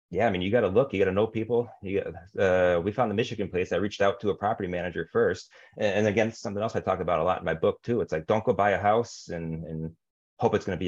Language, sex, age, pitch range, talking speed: English, male, 30-49, 85-105 Hz, 310 wpm